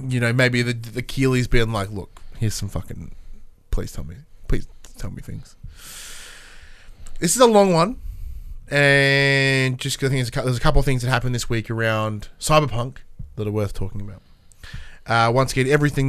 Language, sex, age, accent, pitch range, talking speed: English, male, 20-39, Australian, 105-155 Hz, 185 wpm